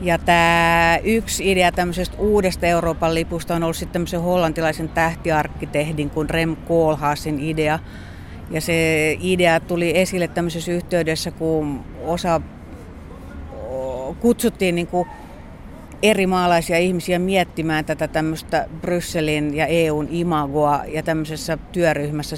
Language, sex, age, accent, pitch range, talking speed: Finnish, female, 60-79, native, 150-170 Hz, 105 wpm